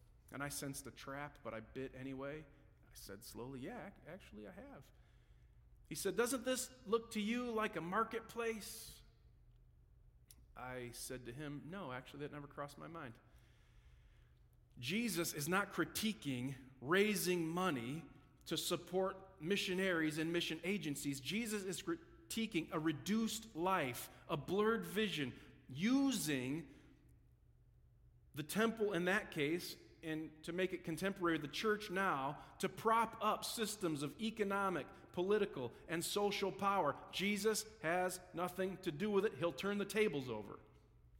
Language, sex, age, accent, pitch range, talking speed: English, male, 40-59, American, 130-195 Hz, 135 wpm